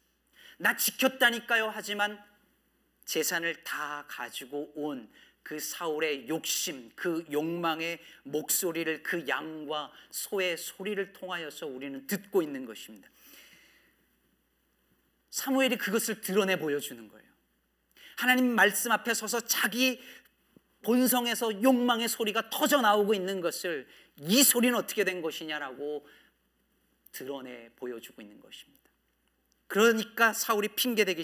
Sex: male